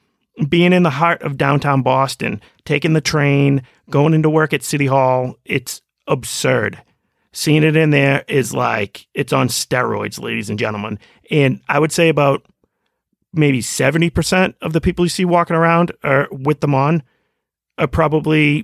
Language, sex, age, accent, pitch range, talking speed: English, male, 40-59, American, 130-160 Hz, 160 wpm